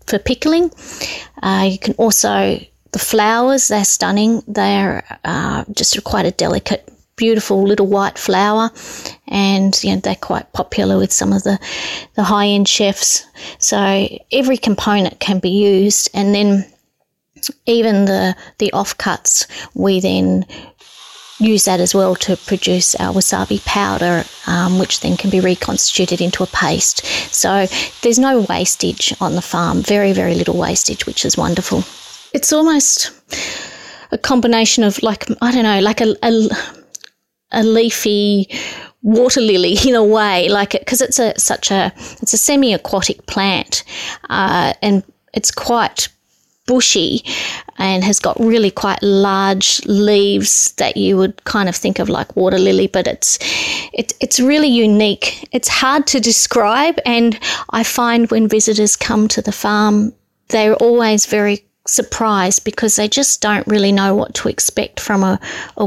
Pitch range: 195-230 Hz